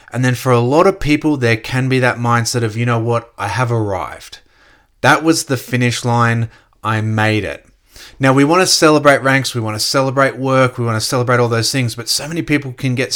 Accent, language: Australian, English